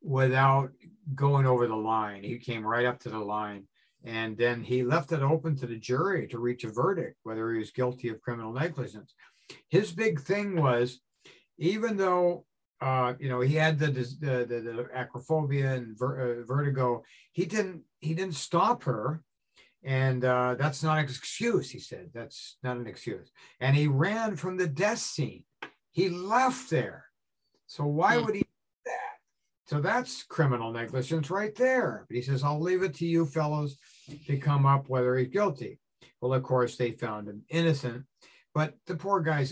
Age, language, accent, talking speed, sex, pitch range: 60-79, English, American, 175 wpm, male, 120-155 Hz